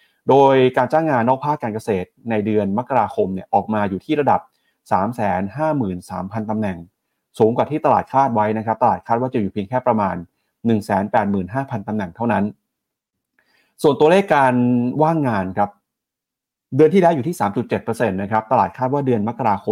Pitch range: 105-145 Hz